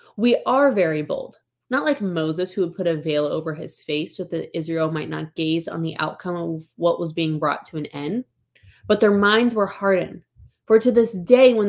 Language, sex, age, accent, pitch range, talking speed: English, female, 20-39, American, 170-215 Hz, 215 wpm